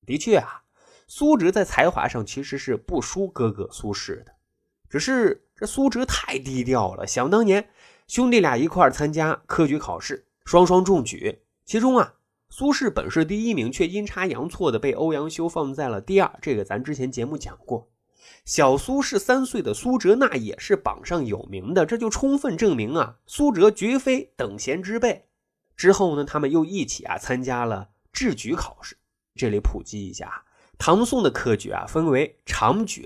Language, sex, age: Chinese, male, 20-39